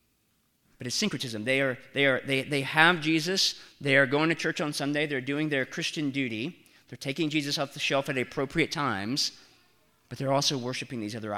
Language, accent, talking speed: English, American, 200 wpm